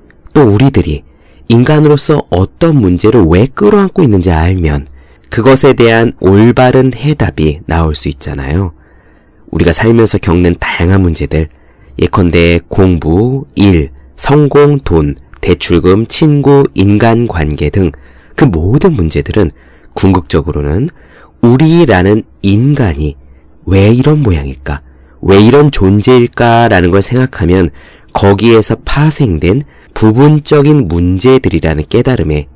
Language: Korean